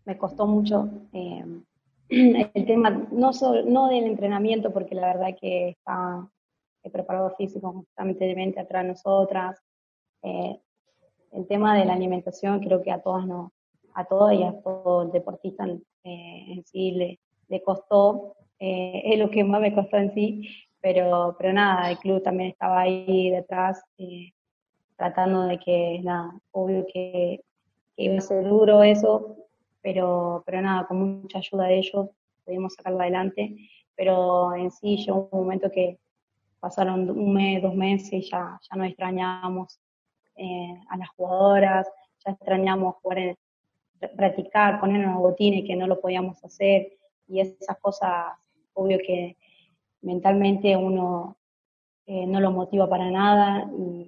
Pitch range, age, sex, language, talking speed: 185-200 Hz, 20-39, female, Spanish, 155 wpm